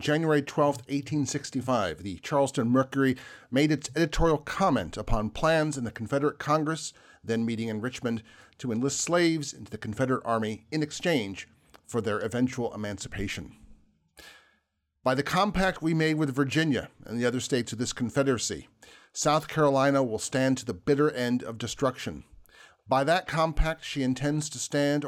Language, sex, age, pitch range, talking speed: English, male, 40-59, 115-145 Hz, 155 wpm